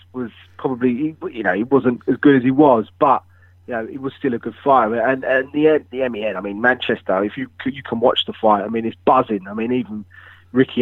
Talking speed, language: 240 wpm, English